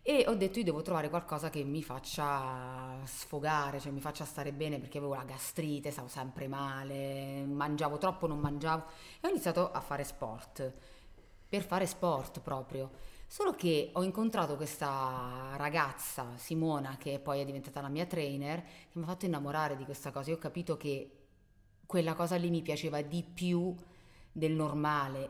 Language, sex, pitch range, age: Italian, female, 140-175 Hz, 30-49